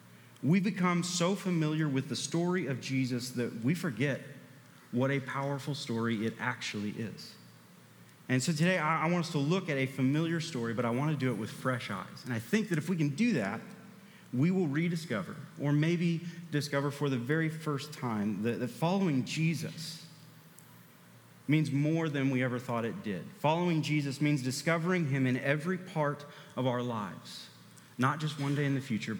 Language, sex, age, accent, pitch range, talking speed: English, male, 30-49, American, 130-160 Hz, 180 wpm